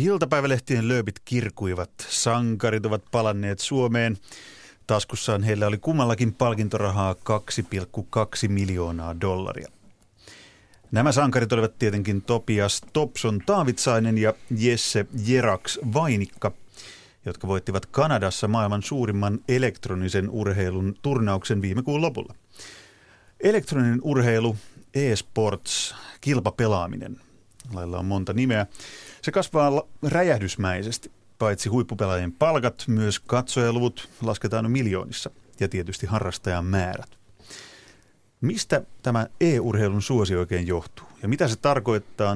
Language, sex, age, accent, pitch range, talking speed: Finnish, male, 30-49, native, 100-125 Hz, 100 wpm